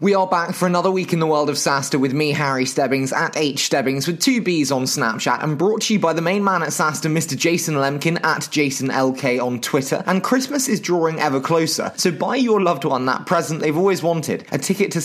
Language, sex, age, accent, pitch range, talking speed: English, male, 20-39, British, 135-180 Hz, 240 wpm